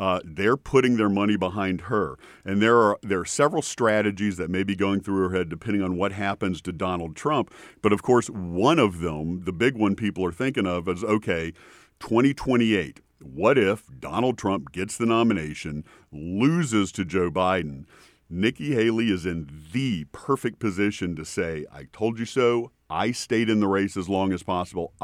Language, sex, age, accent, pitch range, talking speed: English, male, 50-69, American, 90-110 Hz, 185 wpm